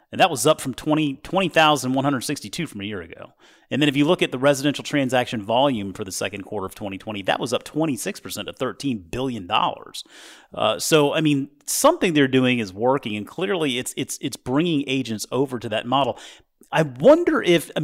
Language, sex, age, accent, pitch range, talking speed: English, male, 30-49, American, 105-145 Hz, 195 wpm